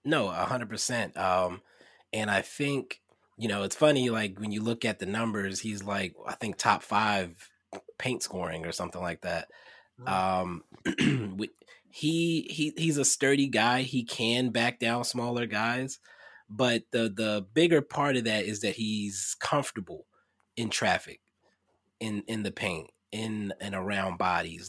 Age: 20-39